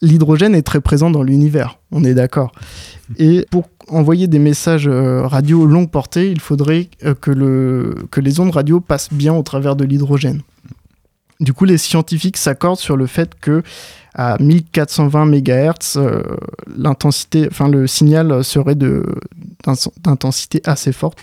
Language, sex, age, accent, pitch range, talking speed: French, male, 20-39, French, 135-165 Hz, 135 wpm